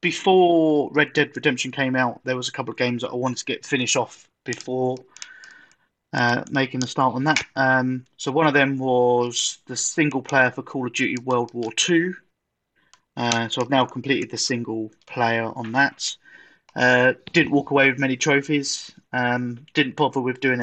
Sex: male